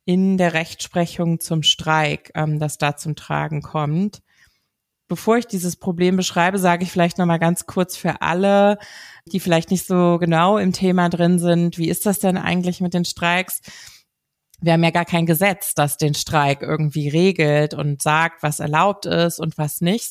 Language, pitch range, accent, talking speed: German, 160-185 Hz, German, 180 wpm